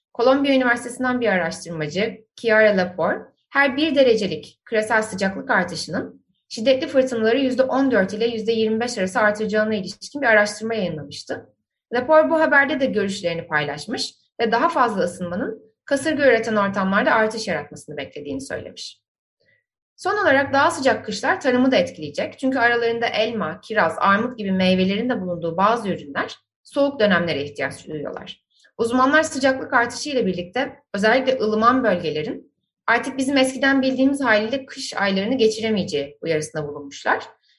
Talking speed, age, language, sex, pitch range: 130 wpm, 30-49, Turkish, female, 195-270 Hz